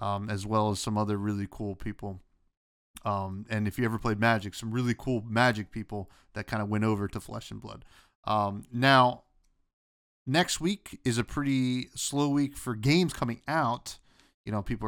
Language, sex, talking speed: English, male, 185 wpm